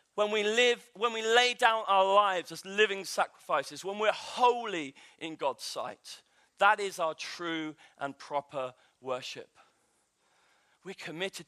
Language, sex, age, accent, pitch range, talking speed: English, male, 40-59, British, 190-310 Hz, 140 wpm